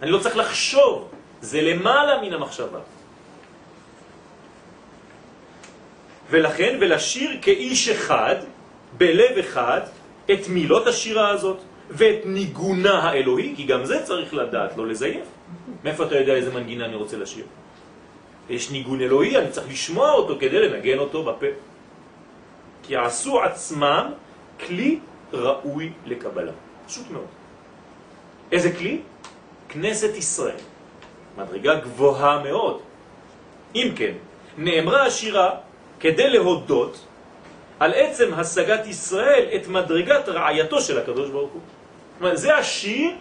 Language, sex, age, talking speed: French, male, 40-59, 95 wpm